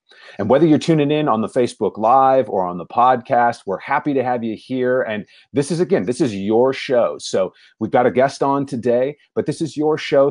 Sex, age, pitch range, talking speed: male, 30-49, 110-150 Hz, 225 wpm